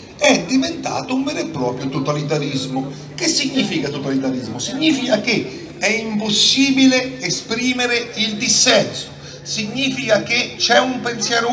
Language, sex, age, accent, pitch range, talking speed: Italian, male, 40-59, native, 150-240 Hz, 115 wpm